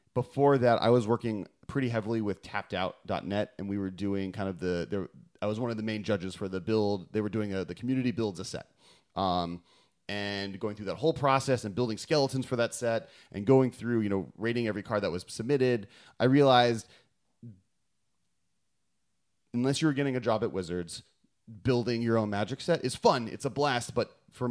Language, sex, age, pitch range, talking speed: English, male, 30-49, 95-120 Hz, 195 wpm